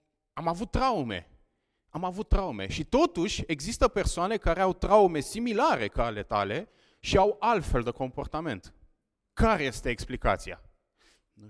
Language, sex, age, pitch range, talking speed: Romanian, male, 30-49, 125-195 Hz, 135 wpm